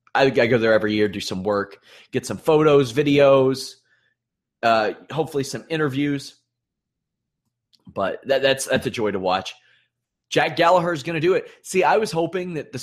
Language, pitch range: English, 120-150 Hz